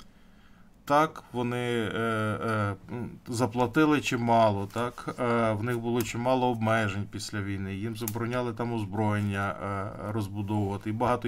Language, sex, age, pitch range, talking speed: Ukrainian, male, 20-39, 105-130 Hz, 120 wpm